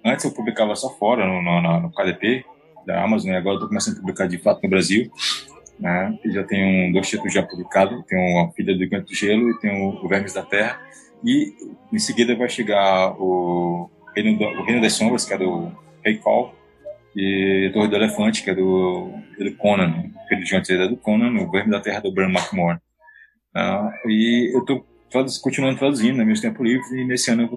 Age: 20-39